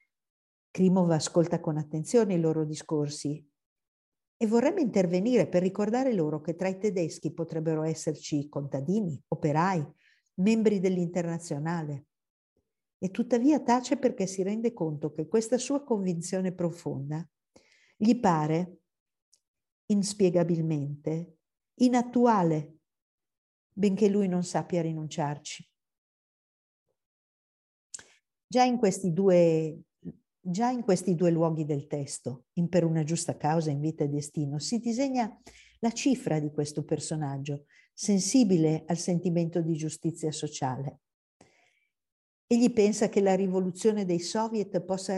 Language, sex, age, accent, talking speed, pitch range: Italian, female, 50-69, native, 115 wpm, 155-215 Hz